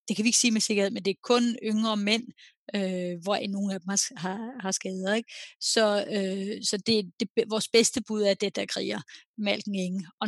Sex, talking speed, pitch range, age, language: female, 220 wpm, 200-230 Hz, 30-49, Danish